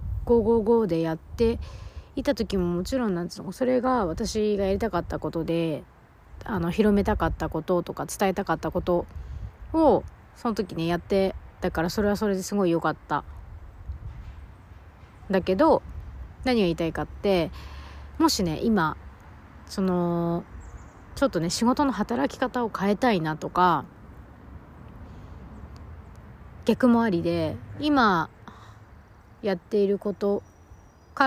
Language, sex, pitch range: Japanese, female, 165-230 Hz